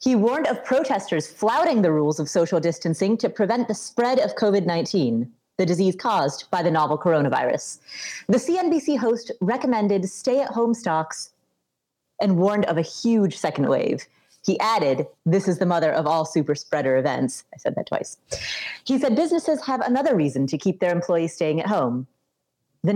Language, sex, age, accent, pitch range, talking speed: English, female, 30-49, American, 160-220 Hz, 170 wpm